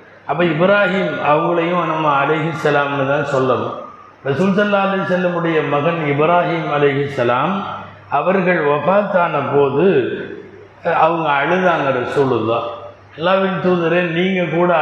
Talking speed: 100 wpm